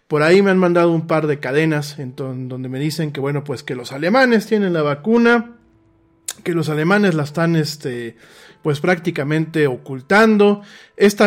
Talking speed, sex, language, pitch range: 175 wpm, male, Spanish, 150-195 Hz